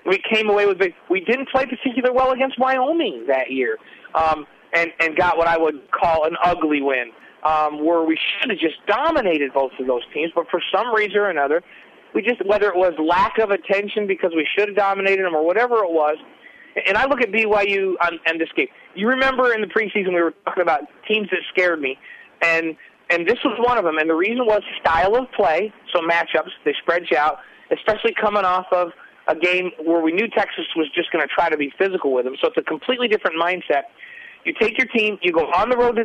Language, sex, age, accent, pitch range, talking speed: English, male, 30-49, American, 165-220 Hz, 235 wpm